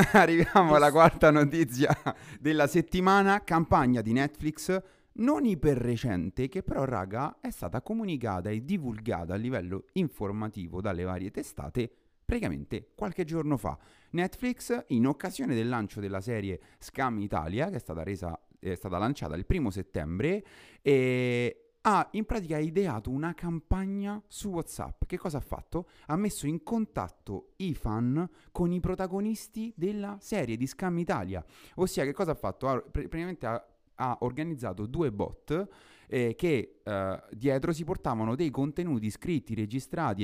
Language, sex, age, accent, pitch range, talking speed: Italian, male, 30-49, native, 110-180 Hz, 150 wpm